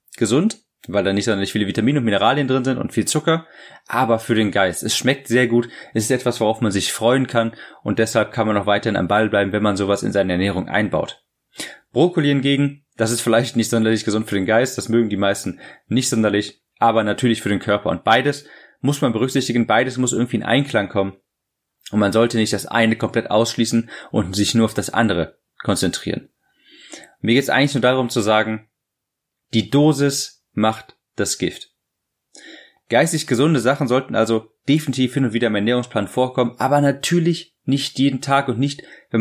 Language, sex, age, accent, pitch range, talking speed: German, male, 30-49, German, 110-130 Hz, 195 wpm